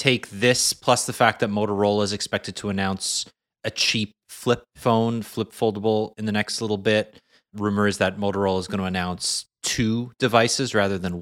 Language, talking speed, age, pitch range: English, 180 wpm, 30-49, 100-125 Hz